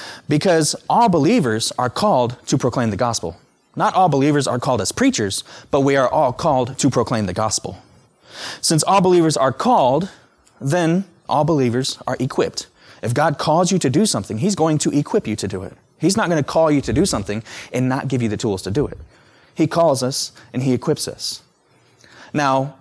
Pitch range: 120-155 Hz